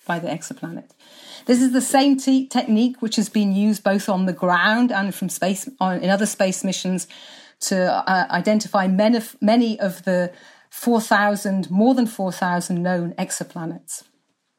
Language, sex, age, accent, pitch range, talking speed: English, female, 40-59, British, 190-245 Hz, 160 wpm